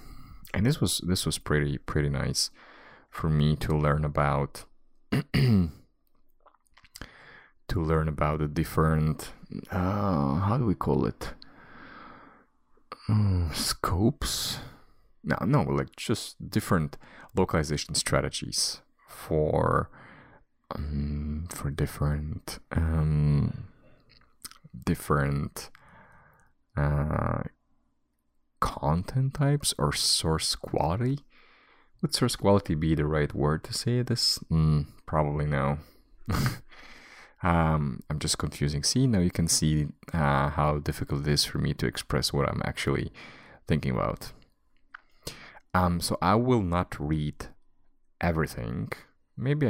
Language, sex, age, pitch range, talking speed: English, male, 30-49, 75-90 Hz, 105 wpm